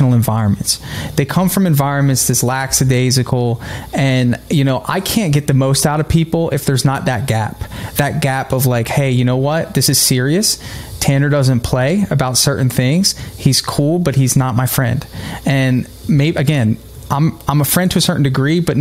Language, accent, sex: English, American, male